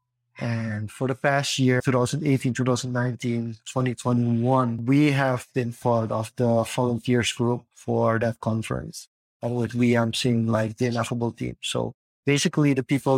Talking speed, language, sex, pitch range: 145 wpm, English, male, 120-135 Hz